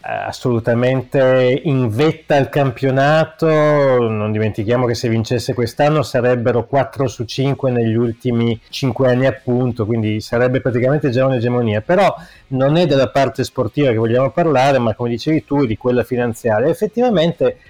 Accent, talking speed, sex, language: native, 140 wpm, male, Italian